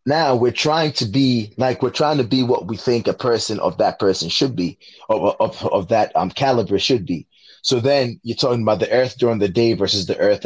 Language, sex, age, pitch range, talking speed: English, male, 20-39, 110-135 Hz, 235 wpm